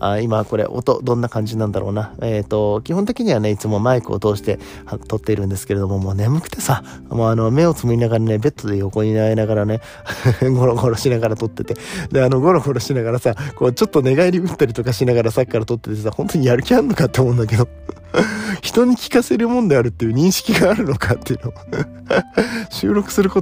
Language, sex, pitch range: Japanese, male, 110-145 Hz